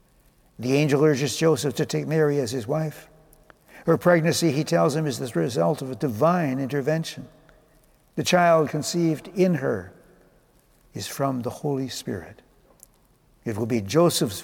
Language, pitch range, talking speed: English, 130-170 Hz, 150 wpm